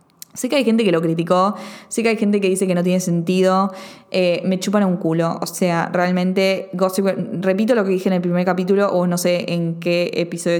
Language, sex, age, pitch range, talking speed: Spanish, female, 20-39, 180-225 Hz, 230 wpm